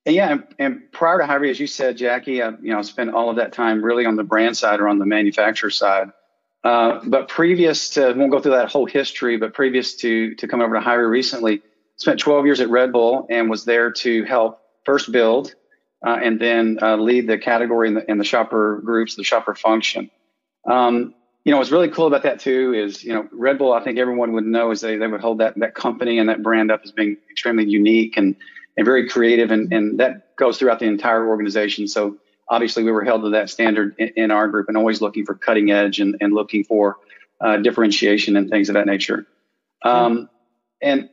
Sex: male